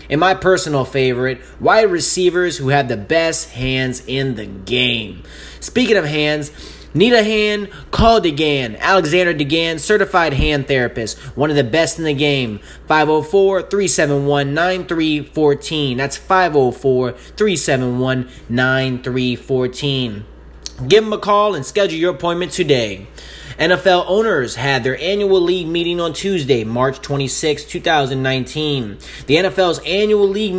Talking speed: 120 wpm